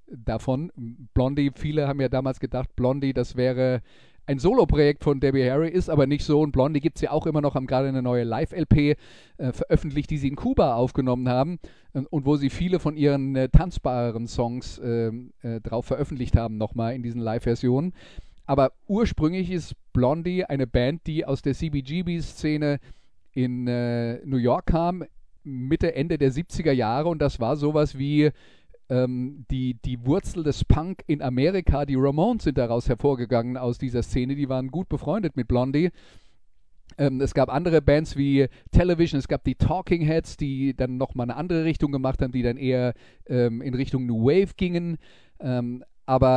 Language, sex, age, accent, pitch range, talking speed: German, male, 40-59, German, 125-155 Hz, 175 wpm